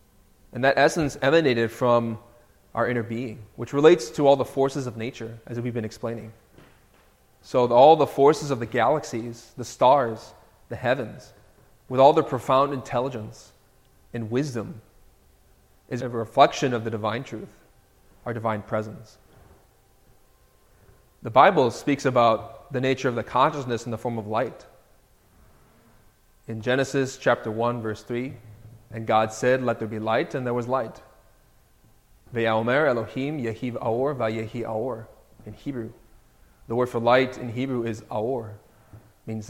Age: 30-49